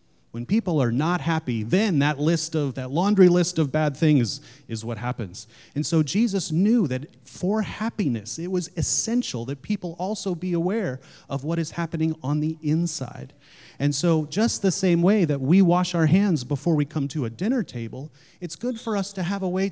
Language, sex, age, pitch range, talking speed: English, male, 30-49, 130-175 Hz, 200 wpm